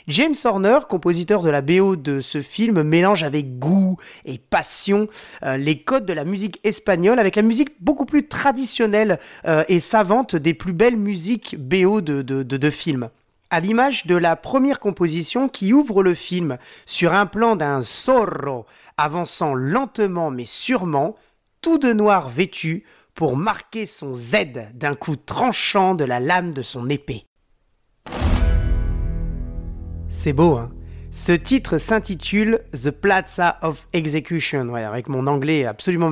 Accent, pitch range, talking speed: French, 145-215 Hz, 150 wpm